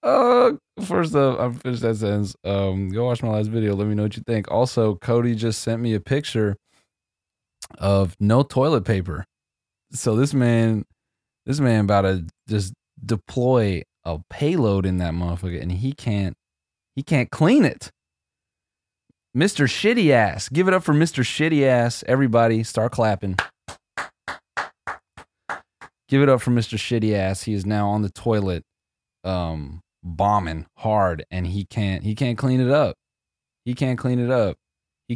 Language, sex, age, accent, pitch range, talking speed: English, male, 20-39, American, 90-120 Hz, 160 wpm